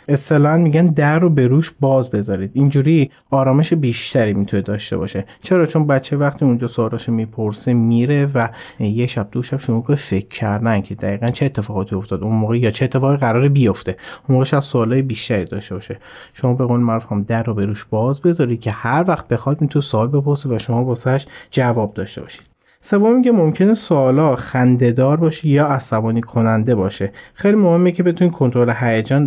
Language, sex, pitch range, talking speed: Persian, male, 110-145 Hz, 180 wpm